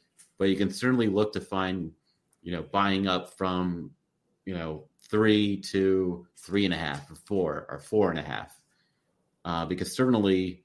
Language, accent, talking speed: English, American, 170 wpm